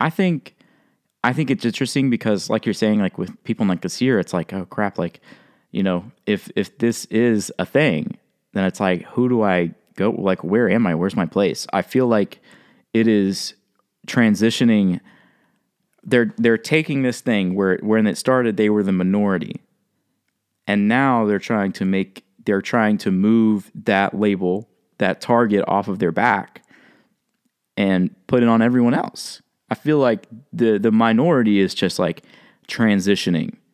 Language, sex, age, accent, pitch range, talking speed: English, male, 20-39, American, 95-120 Hz, 175 wpm